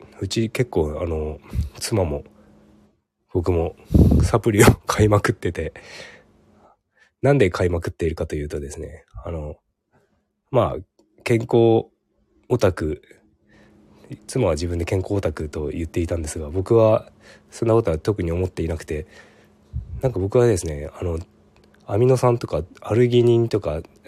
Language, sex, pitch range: Japanese, male, 80-110 Hz